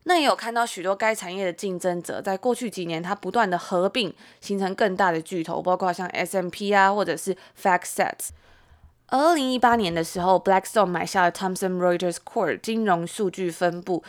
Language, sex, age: Chinese, female, 20-39